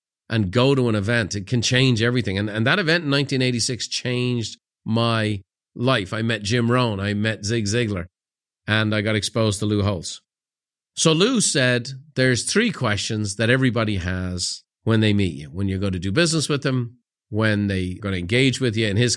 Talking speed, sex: 195 wpm, male